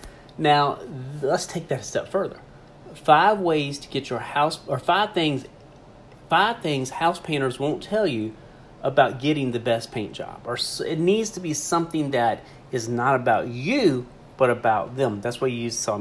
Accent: American